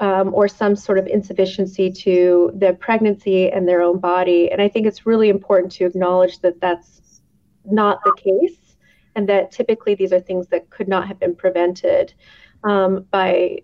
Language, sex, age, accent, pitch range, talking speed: English, female, 30-49, American, 185-215 Hz, 175 wpm